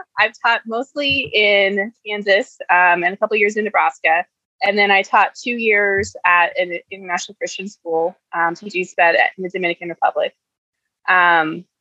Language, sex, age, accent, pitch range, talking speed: English, female, 20-39, American, 170-205 Hz, 150 wpm